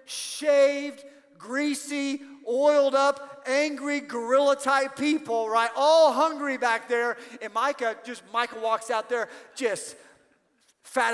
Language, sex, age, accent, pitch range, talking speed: English, male, 40-59, American, 215-270 Hz, 115 wpm